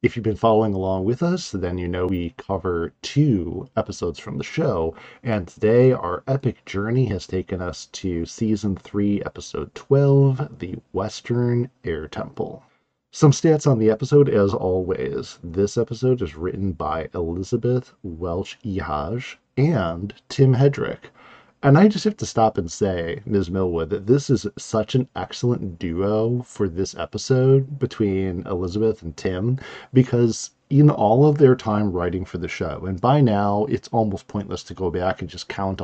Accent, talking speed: American, 165 wpm